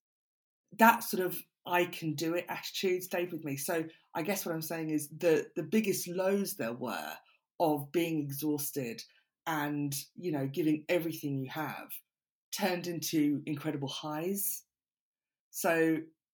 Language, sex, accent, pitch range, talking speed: English, female, British, 140-175 Hz, 145 wpm